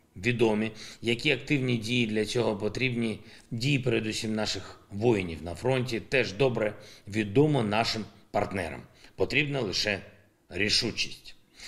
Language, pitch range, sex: Ukrainian, 100-120 Hz, male